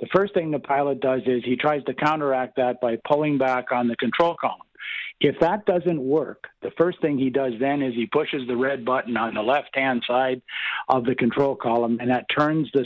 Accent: American